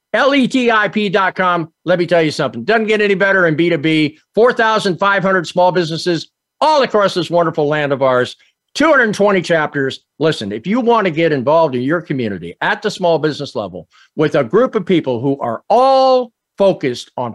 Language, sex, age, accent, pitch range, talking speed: English, male, 50-69, American, 140-200 Hz, 170 wpm